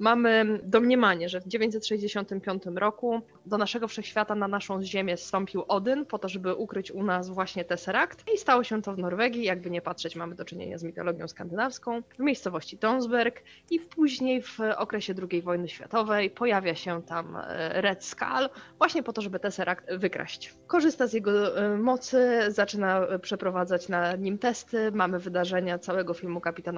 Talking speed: 160 wpm